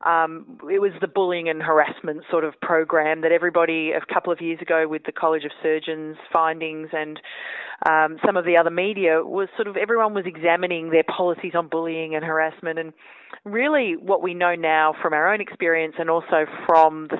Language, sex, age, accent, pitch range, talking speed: English, female, 30-49, Australian, 155-185 Hz, 195 wpm